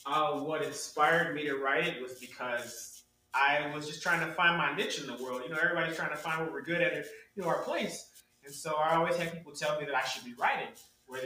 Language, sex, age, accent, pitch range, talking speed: English, male, 20-39, American, 135-160 Hz, 255 wpm